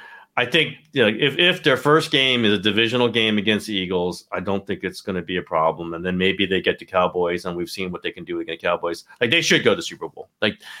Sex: male